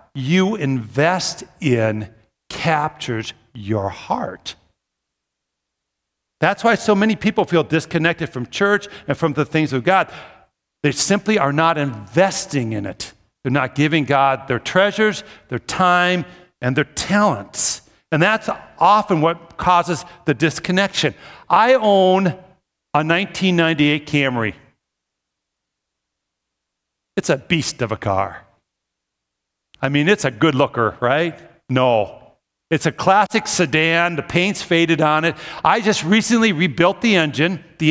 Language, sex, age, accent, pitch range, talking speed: English, male, 50-69, American, 135-190 Hz, 130 wpm